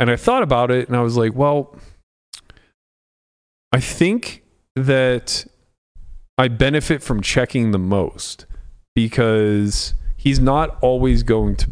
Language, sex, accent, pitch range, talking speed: English, male, American, 95-130 Hz, 130 wpm